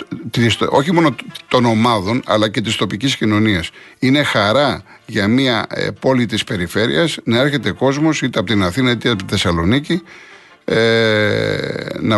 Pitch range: 100-130 Hz